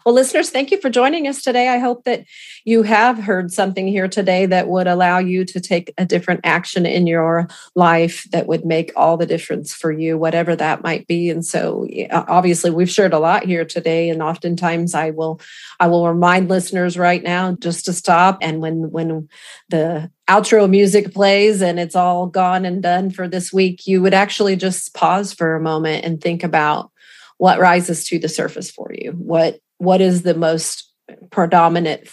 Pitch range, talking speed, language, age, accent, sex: 160-185 Hz, 190 wpm, English, 40-59, American, female